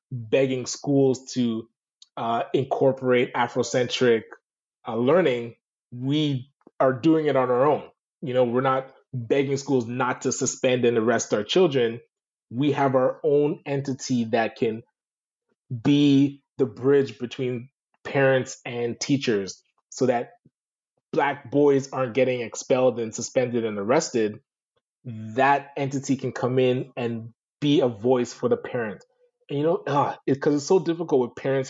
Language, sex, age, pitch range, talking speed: English, male, 20-39, 120-140 Hz, 135 wpm